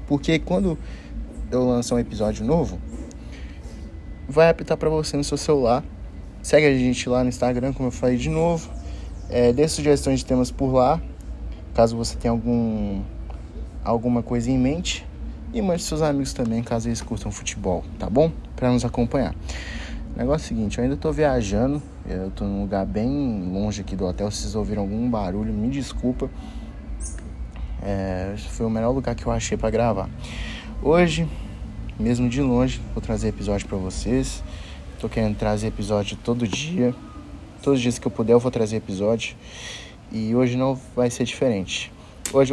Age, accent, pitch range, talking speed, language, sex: 20-39, Brazilian, 100-130 Hz, 160 wpm, Portuguese, male